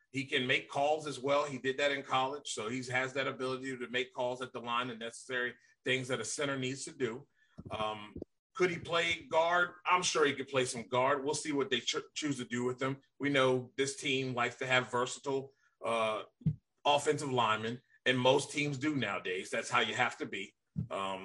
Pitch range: 120-140 Hz